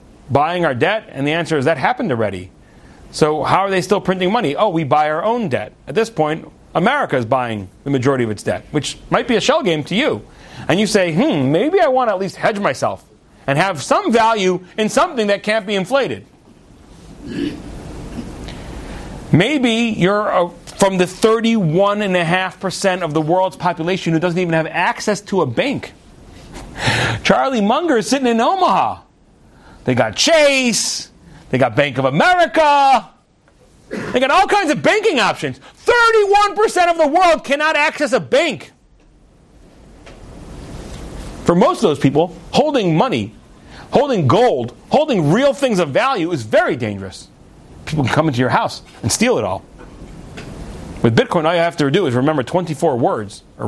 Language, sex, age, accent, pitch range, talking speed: English, male, 40-59, American, 145-230 Hz, 165 wpm